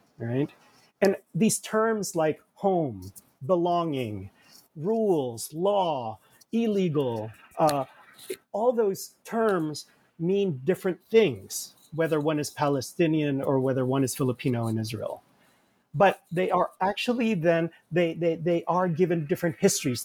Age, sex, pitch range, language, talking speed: 40-59, male, 150-195 Hz, English, 120 wpm